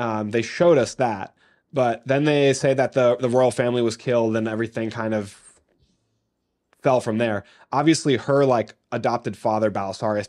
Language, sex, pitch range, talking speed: English, male, 110-125 Hz, 170 wpm